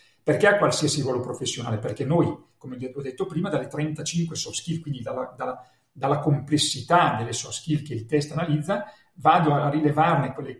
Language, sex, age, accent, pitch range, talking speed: Italian, male, 40-59, native, 130-165 Hz, 175 wpm